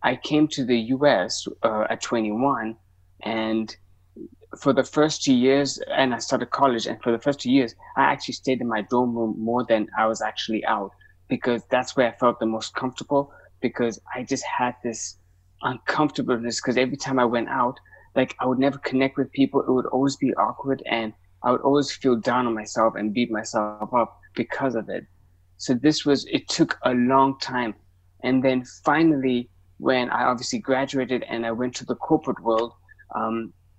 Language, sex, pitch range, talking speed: English, male, 110-135 Hz, 190 wpm